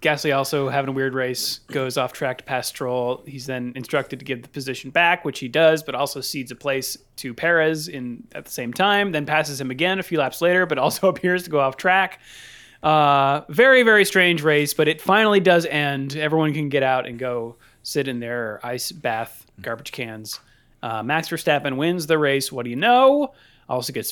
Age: 30-49